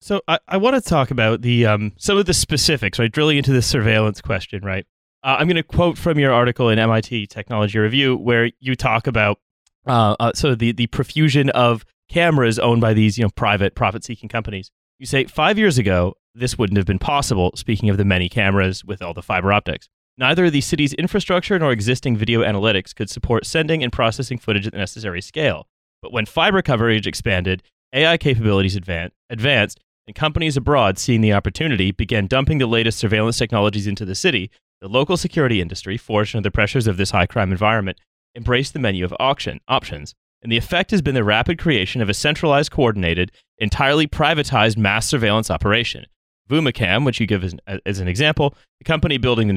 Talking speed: 195 wpm